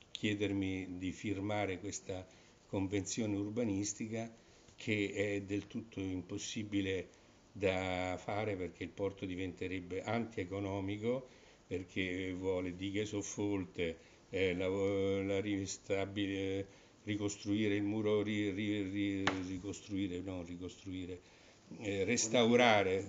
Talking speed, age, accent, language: 95 wpm, 60-79, native, Italian